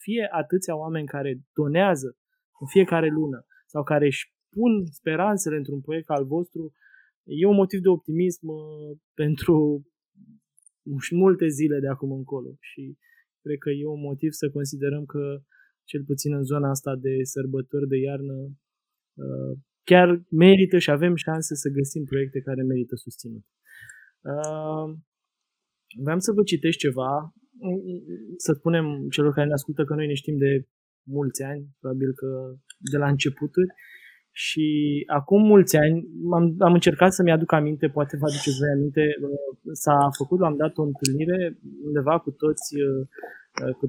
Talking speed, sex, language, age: 145 wpm, male, Romanian, 20-39